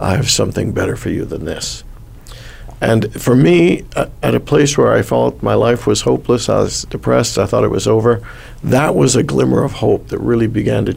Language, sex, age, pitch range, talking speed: English, male, 50-69, 105-135 Hz, 215 wpm